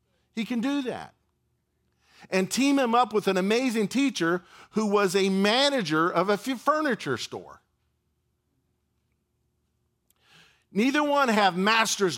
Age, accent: 50-69, American